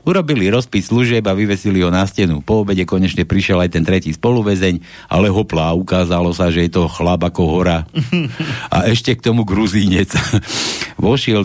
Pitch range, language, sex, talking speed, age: 90-120 Hz, Slovak, male, 170 wpm, 60-79